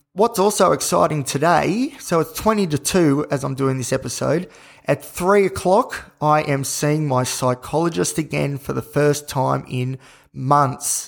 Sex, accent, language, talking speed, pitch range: male, Australian, English, 155 wpm, 130-150 Hz